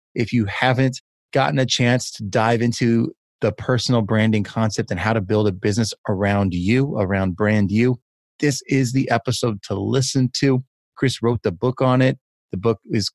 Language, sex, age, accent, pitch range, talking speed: English, male, 30-49, American, 105-125 Hz, 185 wpm